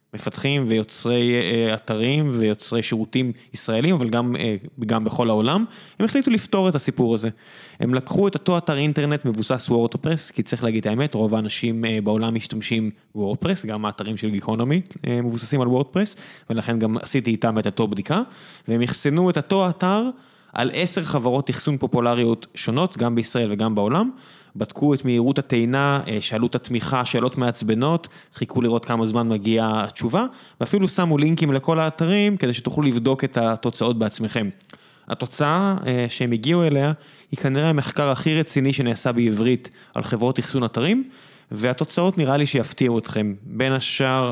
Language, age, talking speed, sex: Hebrew, 20-39, 155 wpm, male